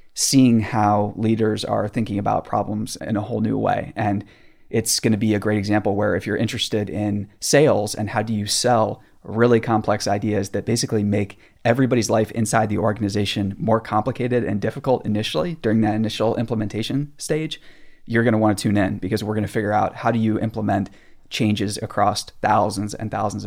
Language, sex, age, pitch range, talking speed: English, male, 20-39, 105-115 Hz, 190 wpm